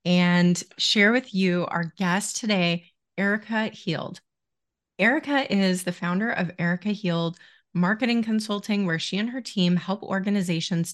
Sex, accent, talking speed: female, American, 135 wpm